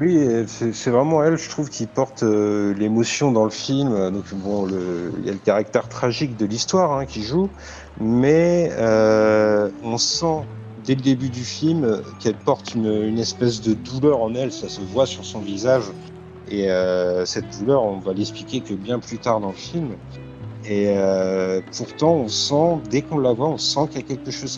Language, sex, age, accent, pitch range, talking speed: French, male, 50-69, French, 100-130 Hz, 195 wpm